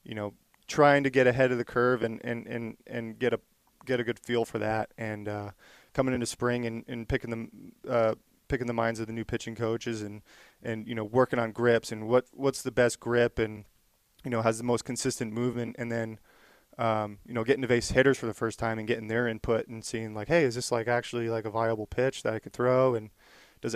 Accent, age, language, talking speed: American, 20-39, English, 240 wpm